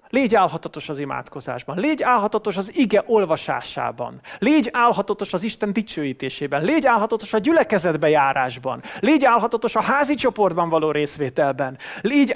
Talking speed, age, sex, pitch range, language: 130 wpm, 30-49, male, 140-210 Hz, English